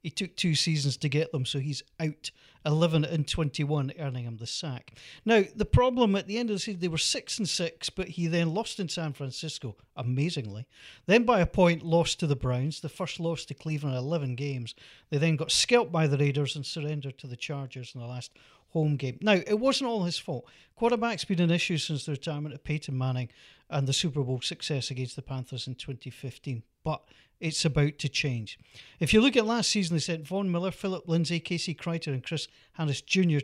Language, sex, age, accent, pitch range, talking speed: English, male, 40-59, British, 140-185 Hz, 215 wpm